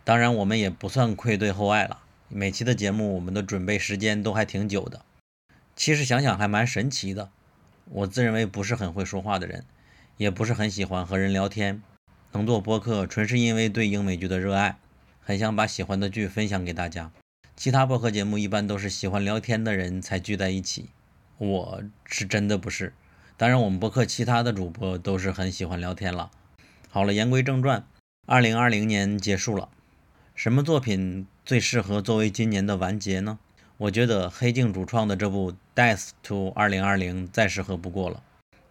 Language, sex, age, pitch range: Chinese, male, 20-39, 95-115 Hz